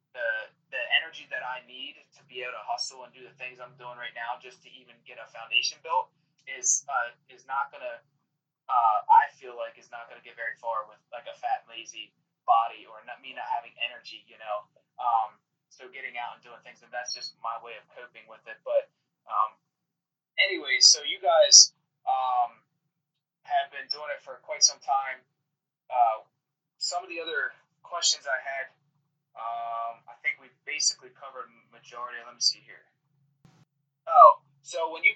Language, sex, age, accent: English, male, 20-39, American